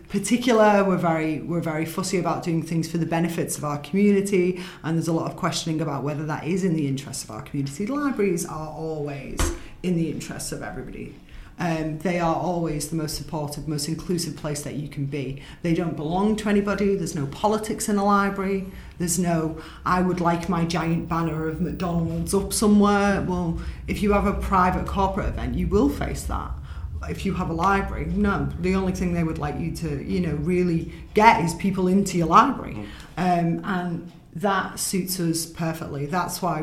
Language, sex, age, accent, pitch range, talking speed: English, female, 30-49, British, 150-185 Hz, 195 wpm